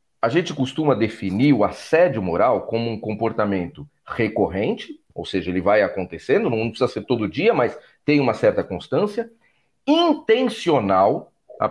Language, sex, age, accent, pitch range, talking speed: Portuguese, male, 40-59, Brazilian, 130-205 Hz, 145 wpm